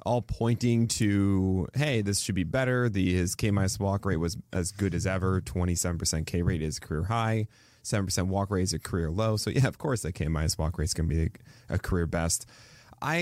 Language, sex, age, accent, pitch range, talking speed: English, male, 20-39, American, 90-120 Hz, 210 wpm